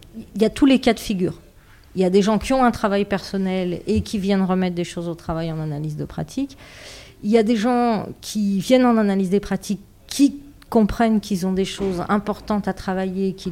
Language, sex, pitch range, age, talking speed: French, female, 180-225 Hz, 40-59, 225 wpm